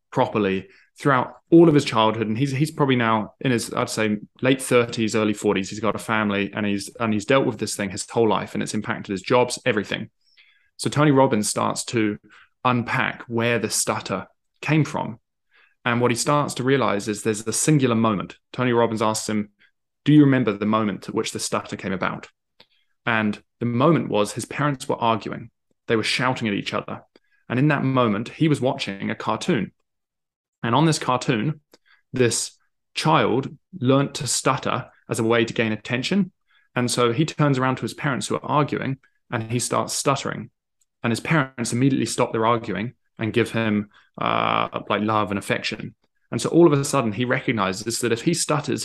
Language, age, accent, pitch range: English, 20-39, British, 110-135 Hz